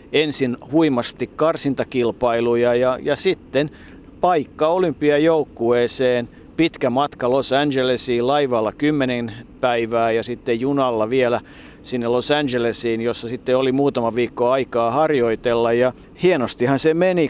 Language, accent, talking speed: Finnish, native, 115 wpm